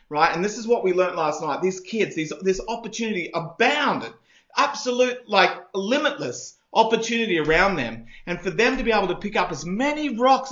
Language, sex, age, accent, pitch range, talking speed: English, male, 30-49, Australian, 175-230 Hz, 190 wpm